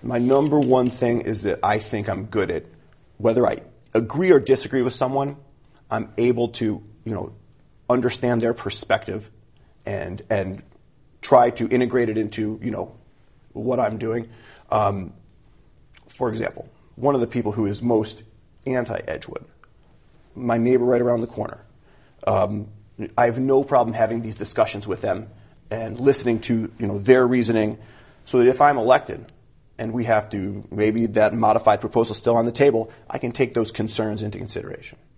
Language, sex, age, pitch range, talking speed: English, male, 30-49, 110-125 Hz, 165 wpm